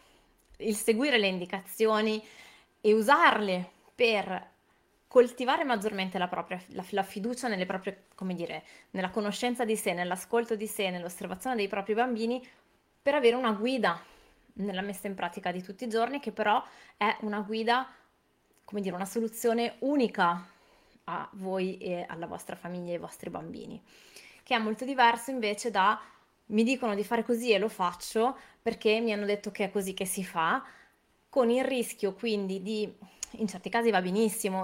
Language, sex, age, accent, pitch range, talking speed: Italian, female, 20-39, native, 195-235 Hz, 165 wpm